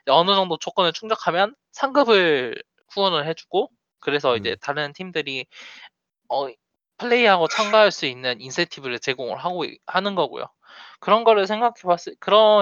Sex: male